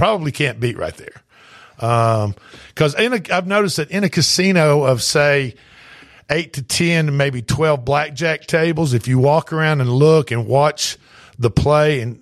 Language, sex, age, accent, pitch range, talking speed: English, male, 50-69, American, 115-150 Hz, 160 wpm